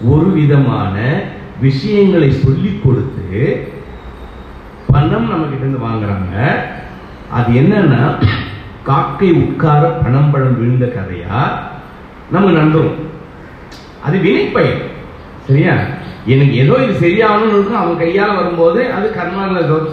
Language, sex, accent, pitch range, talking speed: English, male, Indian, 120-165 Hz, 95 wpm